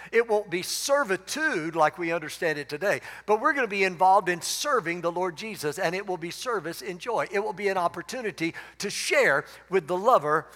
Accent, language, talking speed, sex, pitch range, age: American, English, 210 wpm, male, 145-195 Hz, 60-79